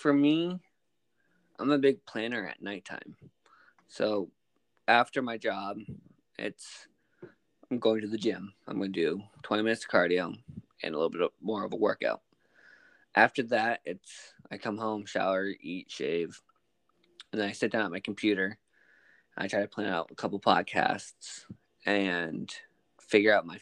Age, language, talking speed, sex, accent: 20-39, English, 160 wpm, male, American